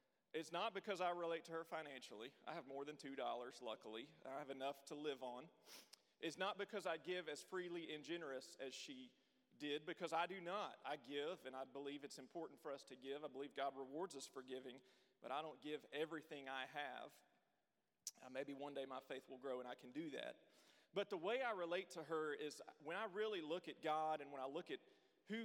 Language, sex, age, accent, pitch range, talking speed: English, male, 40-59, American, 140-180 Hz, 220 wpm